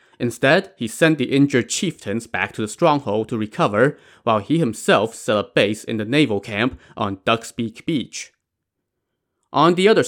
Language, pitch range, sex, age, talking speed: English, 110-155 Hz, male, 30-49, 165 wpm